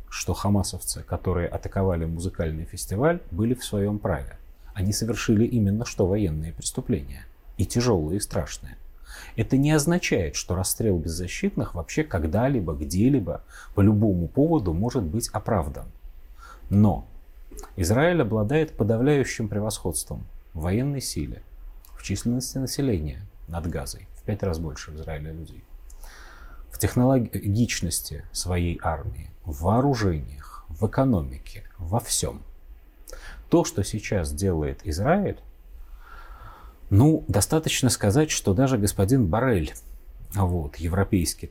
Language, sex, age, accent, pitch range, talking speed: Russian, male, 30-49, native, 80-115 Hz, 115 wpm